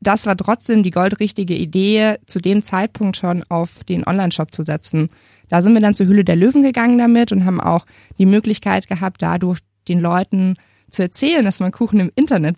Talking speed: 195 wpm